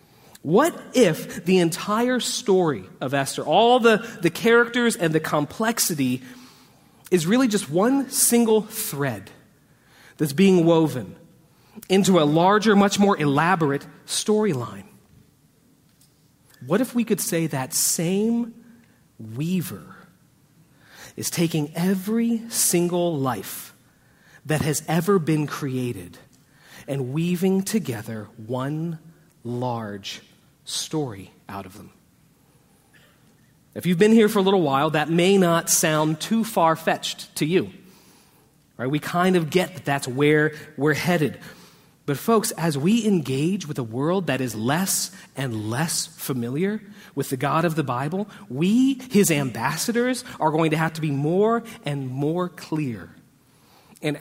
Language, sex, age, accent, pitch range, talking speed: English, male, 40-59, American, 140-195 Hz, 130 wpm